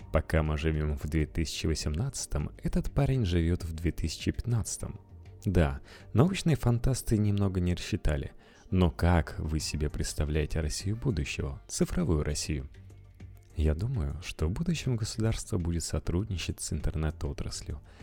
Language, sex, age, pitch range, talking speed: Russian, male, 30-49, 80-105 Hz, 115 wpm